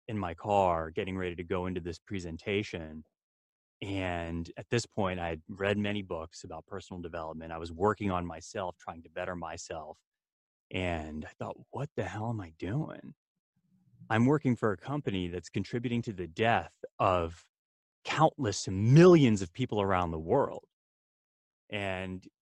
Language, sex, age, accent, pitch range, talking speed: English, male, 30-49, American, 90-120 Hz, 160 wpm